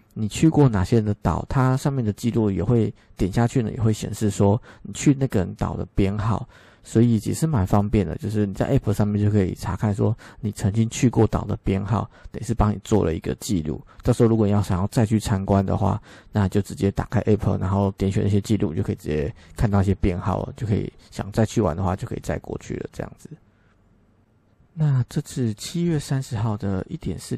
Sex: male